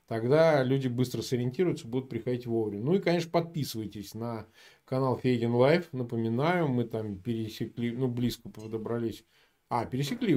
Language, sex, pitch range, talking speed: Russian, male, 115-160 Hz, 140 wpm